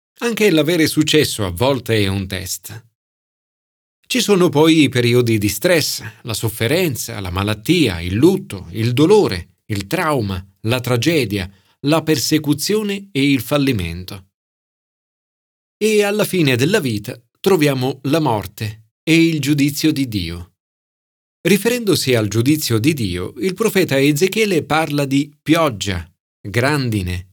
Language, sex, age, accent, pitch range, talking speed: Italian, male, 40-59, native, 105-155 Hz, 125 wpm